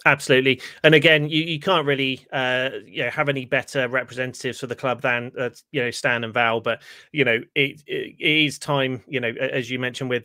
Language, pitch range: English, 125-145 Hz